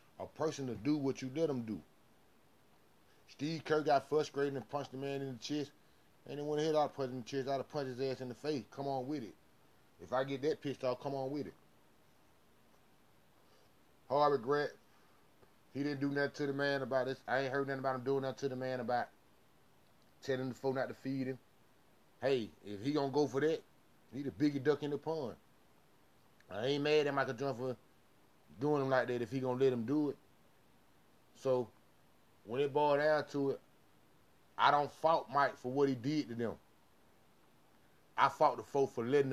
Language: English